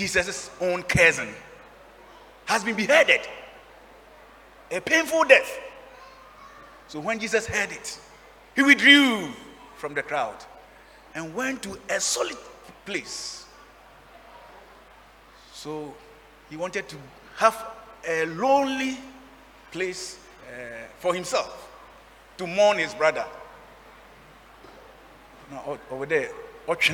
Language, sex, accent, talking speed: English, male, Nigerian, 90 wpm